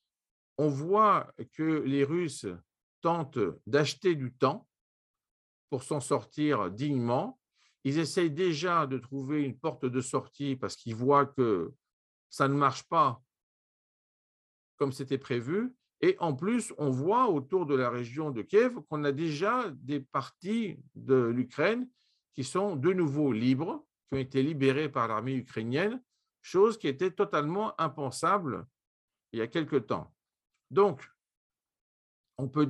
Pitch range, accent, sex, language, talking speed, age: 125-170 Hz, French, male, Greek, 140 wpm, 50-69